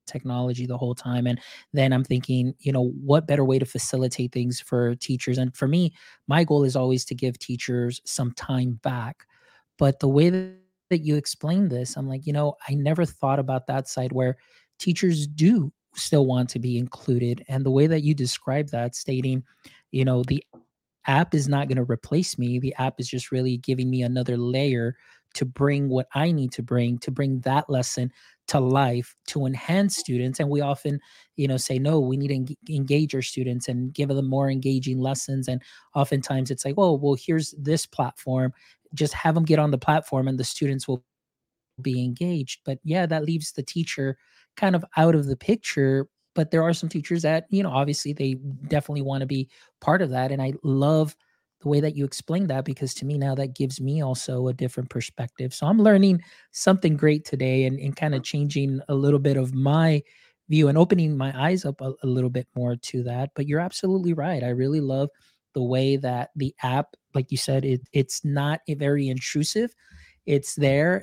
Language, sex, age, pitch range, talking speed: English, male, 20-39, 130-150 Hz, 205 wpm